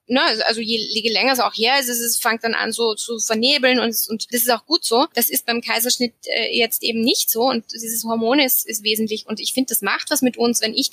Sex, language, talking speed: female, German, 265 wpm